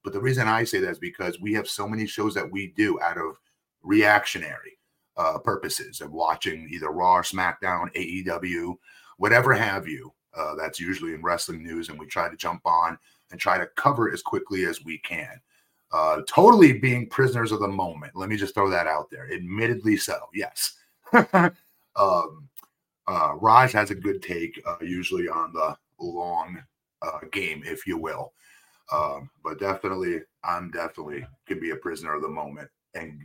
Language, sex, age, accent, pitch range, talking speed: English, male, 30-49, American, 90-110 Hz, 180 wpm